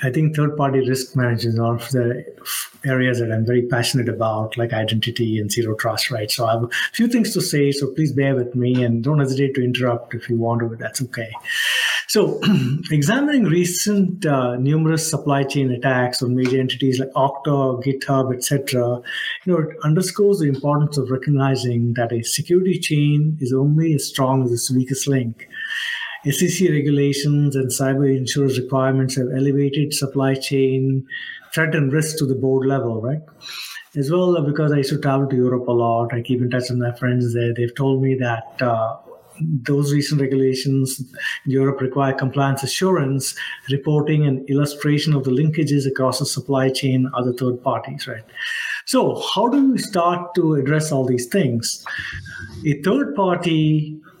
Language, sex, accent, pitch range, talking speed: English, male, Indian, 125-155 Hz, 175 wpm